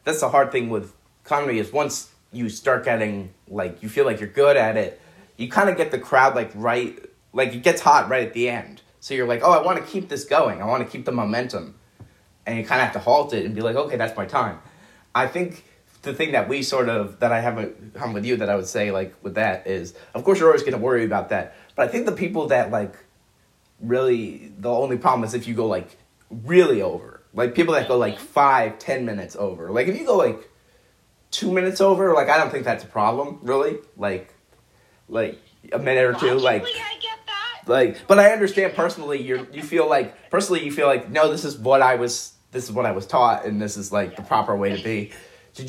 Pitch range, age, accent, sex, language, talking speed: 110-175 Hz, 30-49, American, male, English, 240 wpm